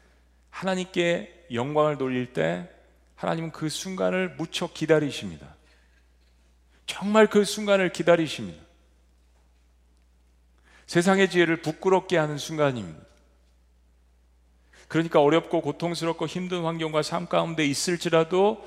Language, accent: Korean, native